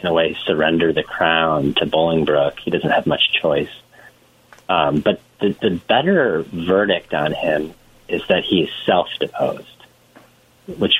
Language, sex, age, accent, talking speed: English, male, 40-59, American, 145 wpm